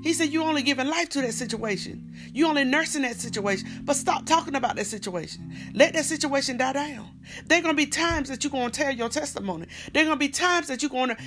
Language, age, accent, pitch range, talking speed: English, 40-59, American, 220-295 Hz, 240 wpm